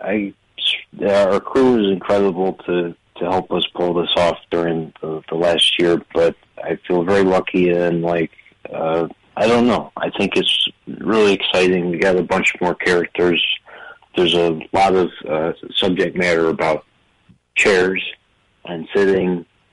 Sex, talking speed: male, 155 wpm